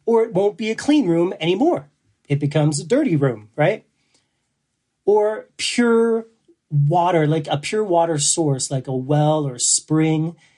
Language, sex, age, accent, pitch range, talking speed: English, male, 30-49, American, 140-170 Hz, 155 wpm